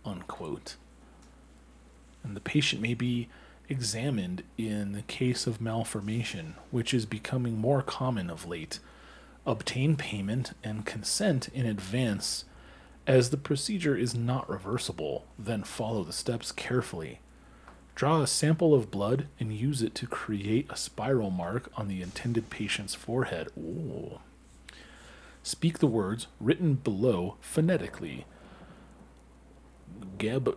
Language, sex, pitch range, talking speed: English, male, 100-135 Hz, 125 wpm